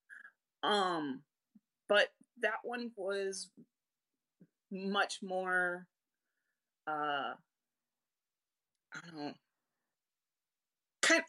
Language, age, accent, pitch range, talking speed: English, 30-49, American, 175-235 Hz, 65 wpm